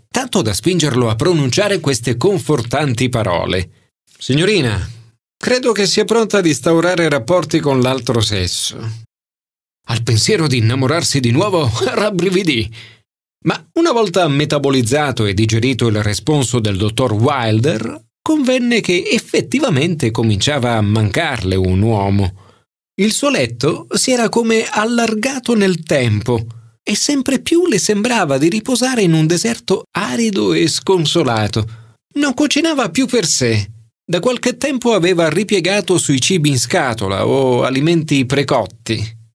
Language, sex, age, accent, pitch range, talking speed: Italian, male, 40-59, native, 115-185 Hz, 130 wpm